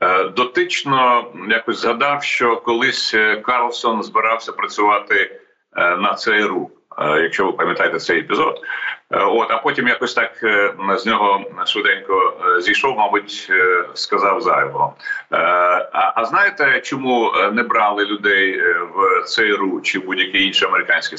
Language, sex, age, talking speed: Ukrainian, male, 40-59, 115 wpm